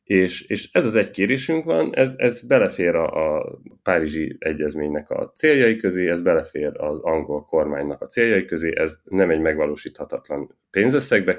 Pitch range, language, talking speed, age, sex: 80-110 Hz, Hungarian, 160 wpm, 30-49, male